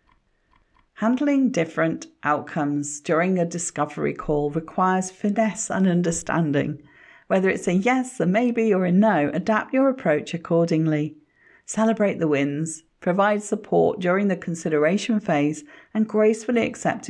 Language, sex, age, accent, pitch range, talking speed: English, female, 40-59, British, 150-200 Hz, 125 wpm